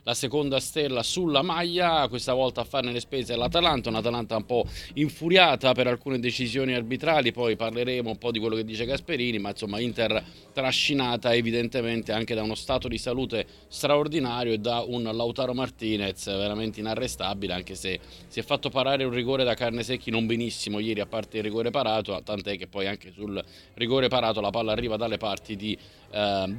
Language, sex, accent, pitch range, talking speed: Italian, male, native, 105-130 Hz, 185 wpm